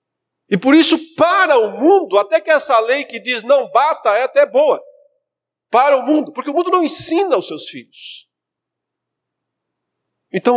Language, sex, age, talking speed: Portuguese, male, 50-69, 165 wpm